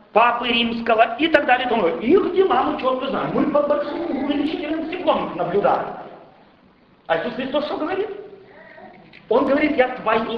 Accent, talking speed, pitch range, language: native, 150 wpm, 235-335 Hz, Russian